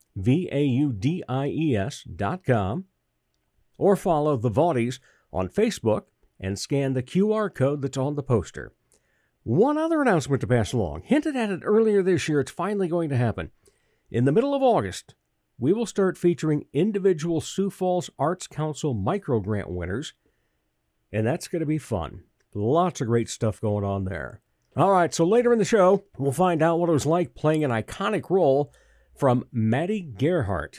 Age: 60-79